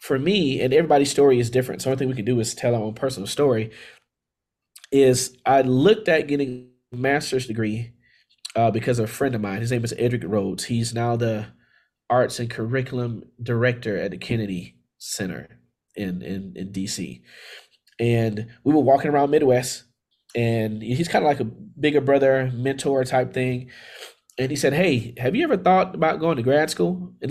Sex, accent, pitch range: male, American, 115-140 Hz